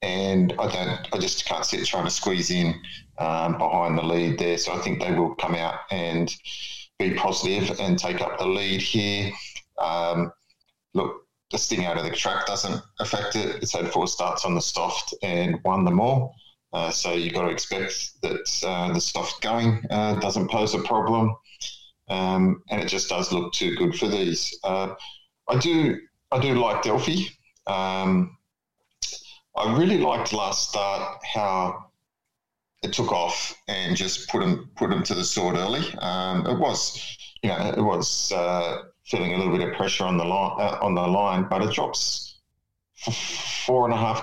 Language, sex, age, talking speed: English, male, 30-49, 185 wpm